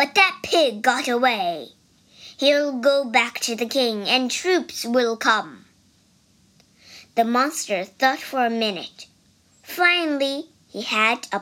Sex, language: male, Chinese